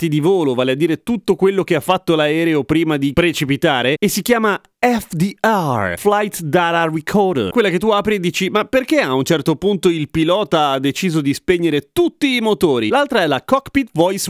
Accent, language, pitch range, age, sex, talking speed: native, Italian, 145-195 Hz, 30-49, male, 195 wpm